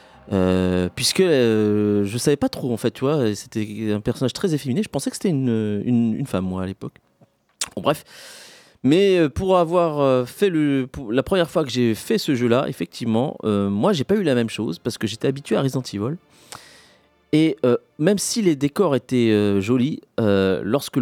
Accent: French